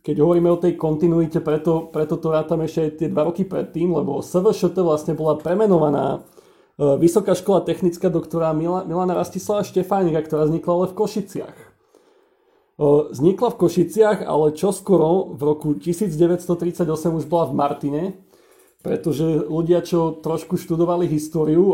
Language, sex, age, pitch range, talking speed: Slovak, male, 40-59, 155-180 Hz, 135 wpm